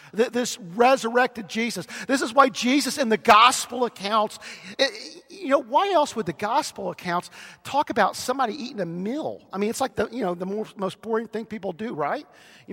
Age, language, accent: 50-69, English, American